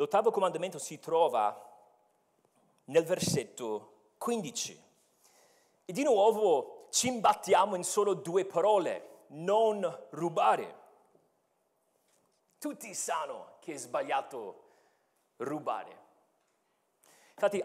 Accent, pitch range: native, 185-275 Hz